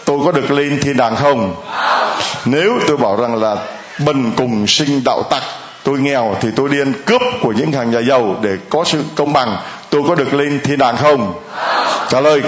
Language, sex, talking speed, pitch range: Vietnamese, male, 200 wpm, 110-170 Hz